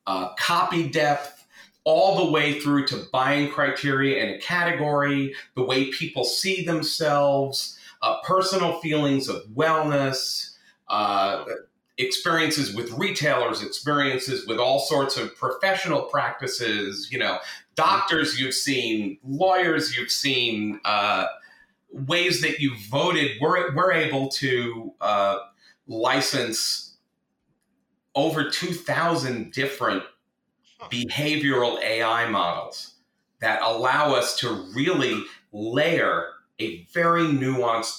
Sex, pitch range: male, 120-160 Hz